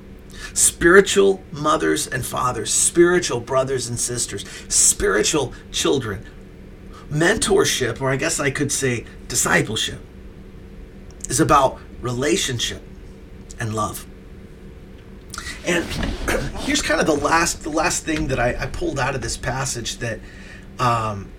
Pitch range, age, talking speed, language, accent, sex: 95-150 Hz, 40-59, 120 wpm, English, American, male